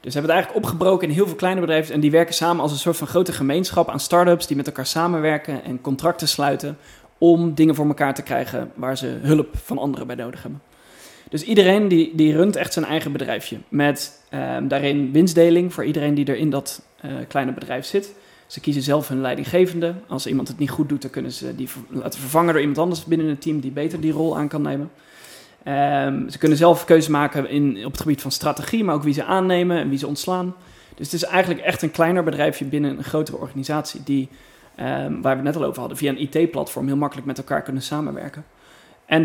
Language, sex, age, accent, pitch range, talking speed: Dutch, male, 20-39, Dutch, 140-170 Hz, 230 wpm